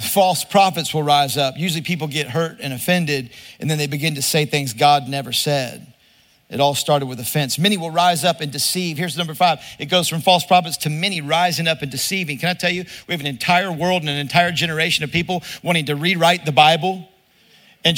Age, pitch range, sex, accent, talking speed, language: 50-69, 165-205 Hz, male, American, 225 wpm, English